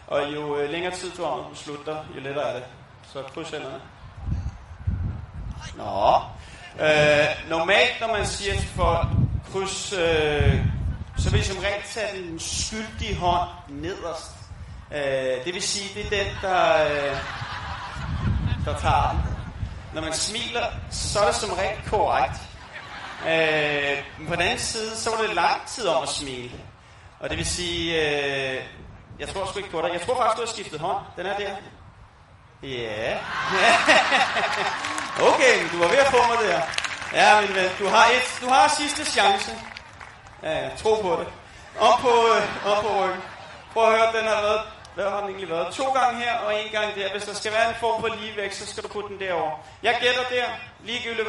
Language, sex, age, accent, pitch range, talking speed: English, male, 30-49, Danish, 140-210 Hz, 180 wpm